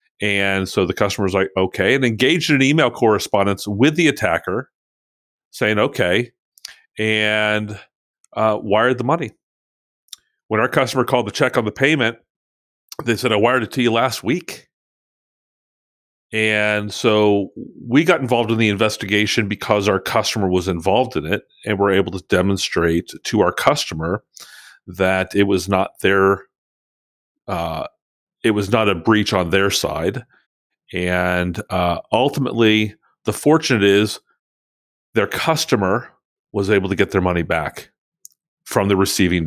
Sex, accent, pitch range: male, American, 95-120 Hz